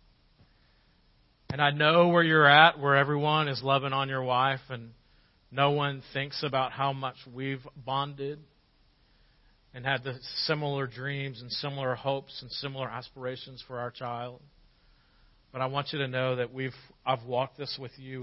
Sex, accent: male, American